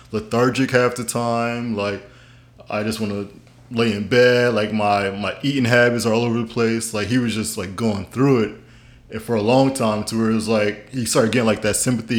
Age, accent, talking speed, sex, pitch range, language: 20-39, American, 225 wpm, male, 110-125 Hz, English